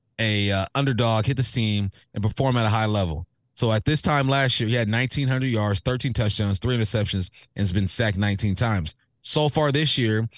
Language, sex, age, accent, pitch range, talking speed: English, male, 20-39, American, 105-130 Hz, 210 wpm